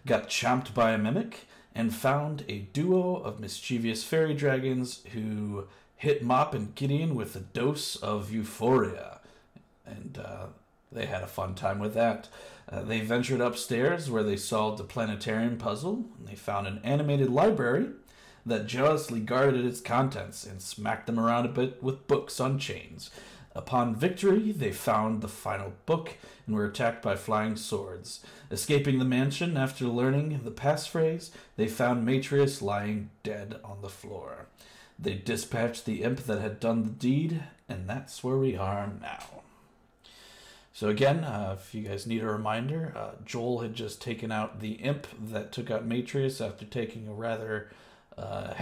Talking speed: 165 wpm